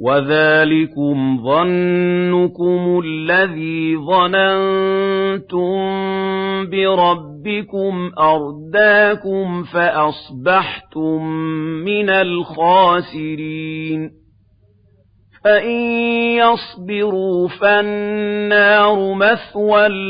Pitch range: 160-195 Hz